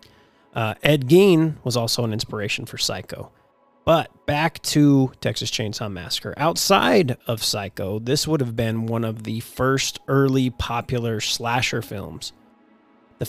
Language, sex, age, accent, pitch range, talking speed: English, male, 30-49, American, 110-135 Hz, 140 wpm